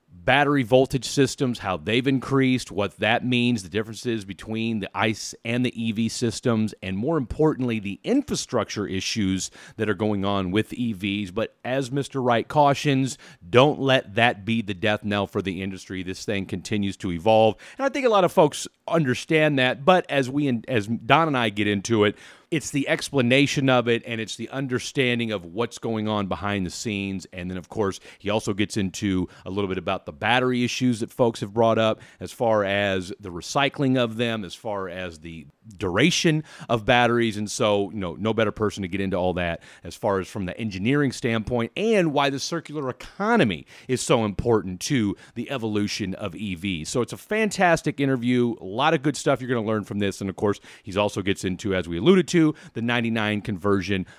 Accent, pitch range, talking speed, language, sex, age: American, 100-130 Hz, 200 wpm, English, male, 30-49